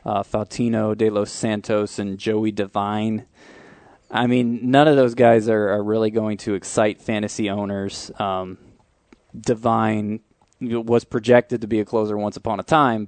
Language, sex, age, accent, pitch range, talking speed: English, male, 20-39, American, 105-120 Hz, 155 wpm